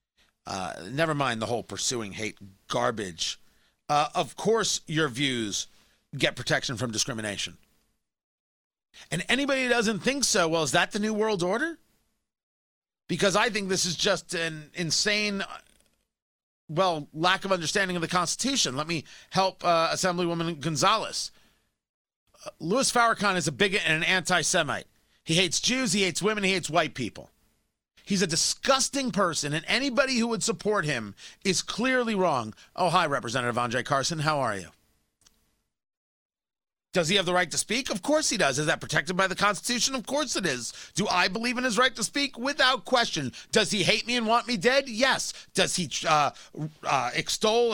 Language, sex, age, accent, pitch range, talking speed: English, male, 40-59, American, 155-235 Hz, 170 wpm